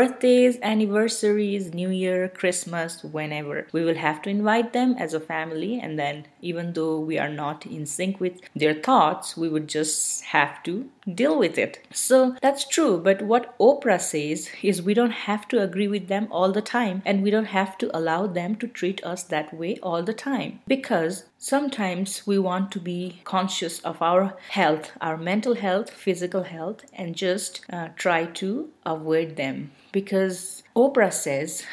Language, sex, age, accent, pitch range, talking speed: English, female, 30-49, Indian, 165-210 Hz, 175 wpm